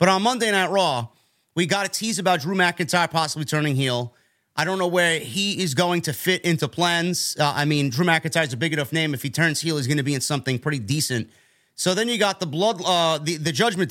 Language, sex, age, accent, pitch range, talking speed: English, male, 30-49, American, 130-170 Hz, 250 wpm